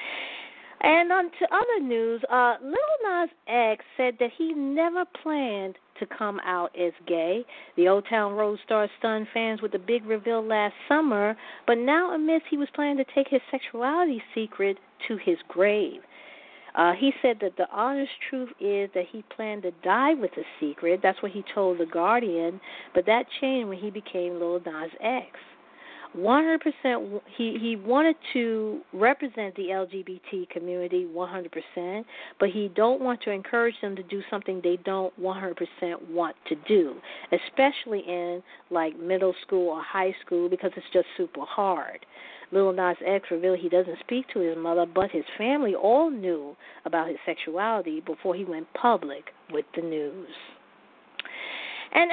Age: 40-59